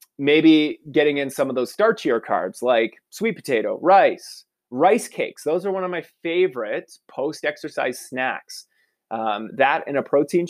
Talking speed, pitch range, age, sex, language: 155 wpm, 120-170 Hz, 20-39, male, English